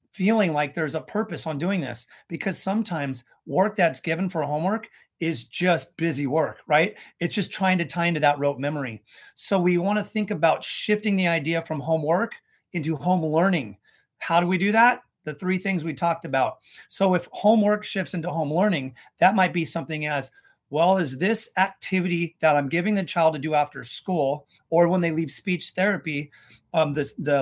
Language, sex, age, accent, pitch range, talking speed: English, male, 30-49, American, 150-185 Hz, 190 wpm